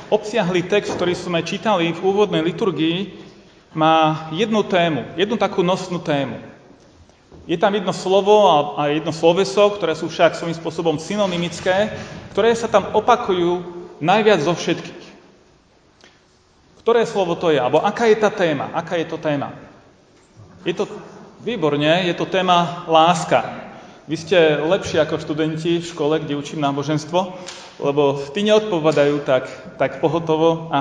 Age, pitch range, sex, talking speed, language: 30-49, 155-195 Hz, male, 140 wpm, Slovak